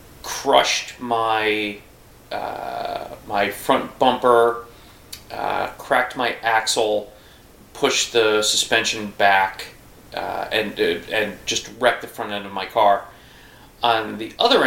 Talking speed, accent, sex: 120 wpm, American, male